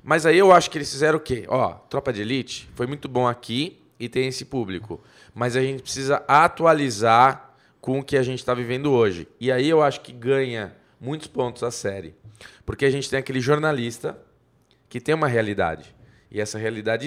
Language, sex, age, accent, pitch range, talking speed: Portuguese, male, 20-39, Brazilian, 115-145 Hz, 200 wpm